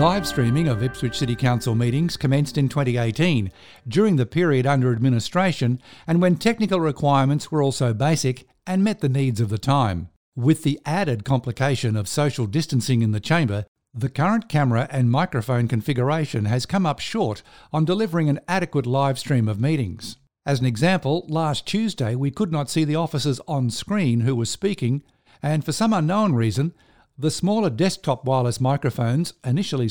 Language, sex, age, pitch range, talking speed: English, male, 60-79, 120-160 Hz, 170 wpm